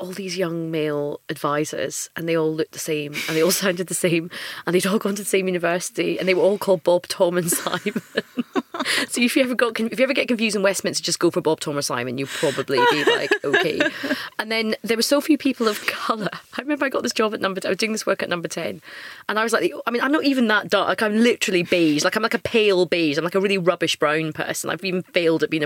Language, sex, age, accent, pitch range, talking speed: English, female, 30-49, British, 175-230 Hz, 270 wpm